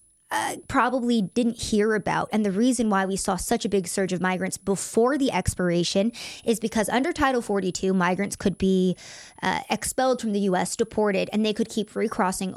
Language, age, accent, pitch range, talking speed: English, 20-39, American, 185-220 Hz, 185 wpm